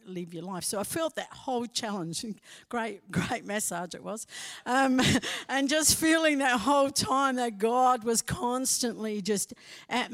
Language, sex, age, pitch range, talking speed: English, female, 50-69, 195-245 Hz, 160 wpm